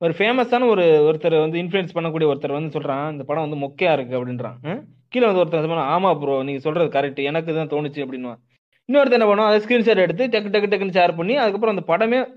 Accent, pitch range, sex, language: native, 150-200 Hz, male, Tamil